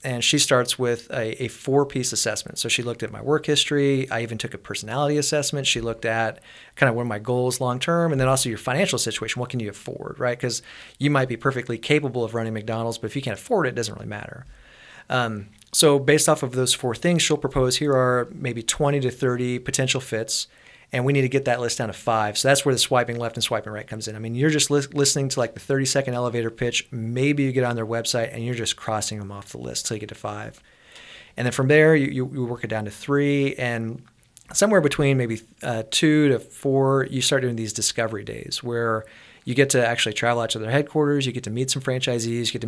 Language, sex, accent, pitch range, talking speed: English, male, American, 115-135 Hz, 245 wpm